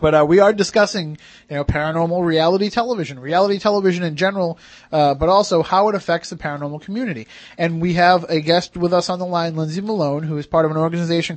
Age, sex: 30-49, male